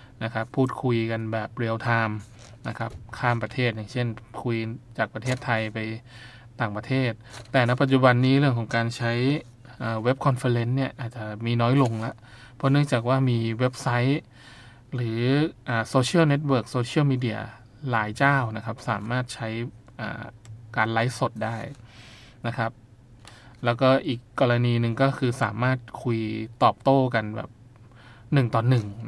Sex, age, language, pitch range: male, 20-39, Thai, 115-125 Hz